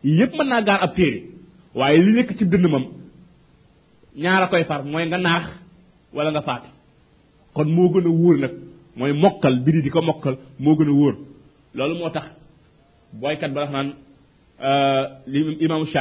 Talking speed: 80 wpm